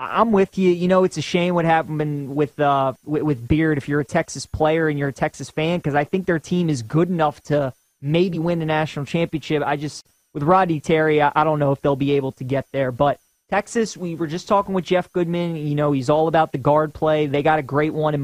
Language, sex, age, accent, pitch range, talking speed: English, male, 20-39, American, 145-175 Hz, 255 wpm